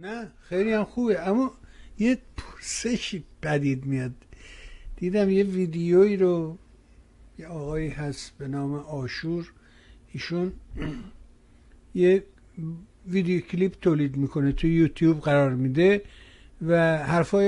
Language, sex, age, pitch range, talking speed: Persian, male, 60-79, 145-190 Hz, 105 wpm